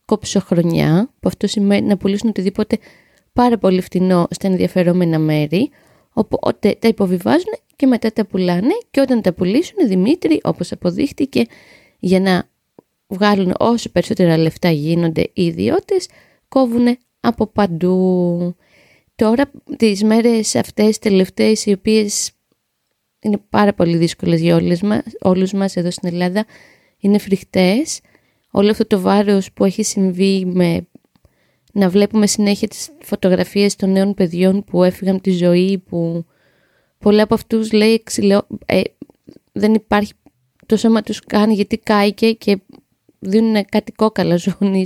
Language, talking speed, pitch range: Greek, 135 wpm, 185-220 Hz